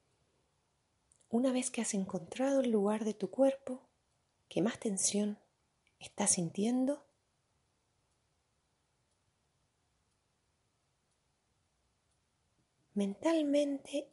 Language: Spanish